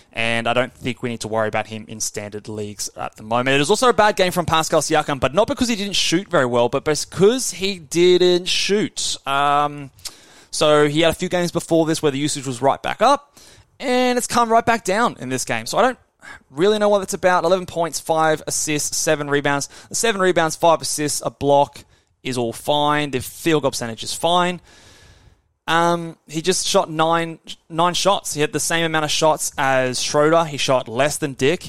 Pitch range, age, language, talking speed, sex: 120-155 Hz, 20-39, English, 215 wpm, male